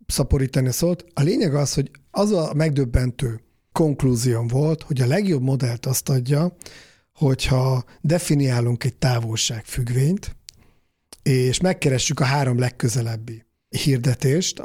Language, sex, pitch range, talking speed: Hungarian, male, 125-150 Hz, 110 wpm